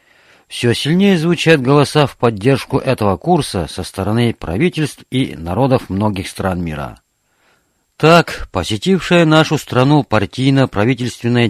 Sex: male